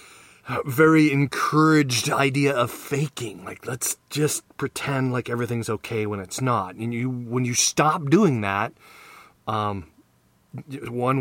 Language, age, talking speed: English, 30-49, 130 wpm